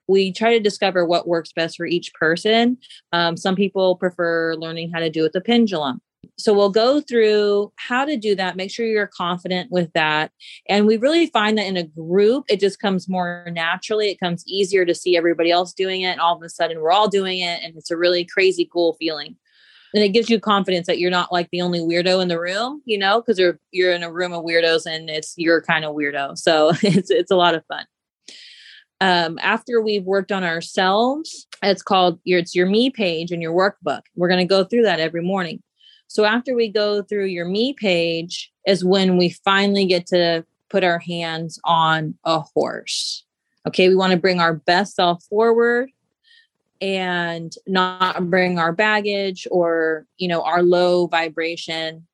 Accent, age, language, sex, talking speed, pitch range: American, 30-49, English, female, 205 wpm, 170-200 Hz